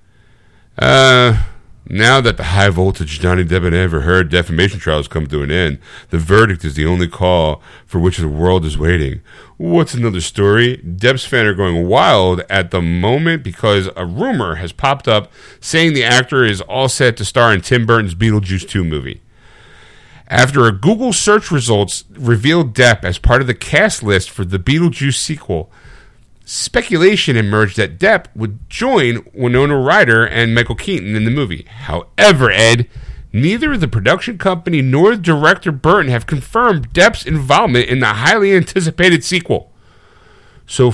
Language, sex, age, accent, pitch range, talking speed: English, male, 50-69, American, 95-145 Hz, 165 wpm